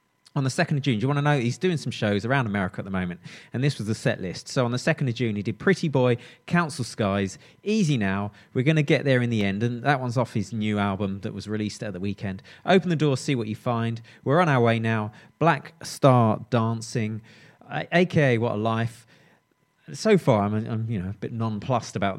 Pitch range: 105-145 Hz